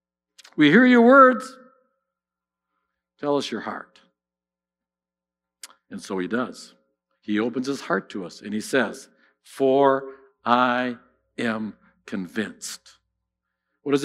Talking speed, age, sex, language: 115 wpm, 60-79, male, English